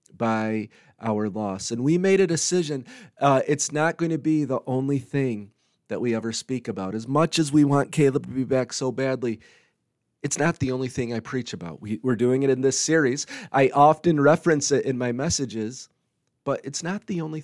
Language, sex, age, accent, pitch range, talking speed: English, male, 30-49, American, 125-150 Hz, 205 wpm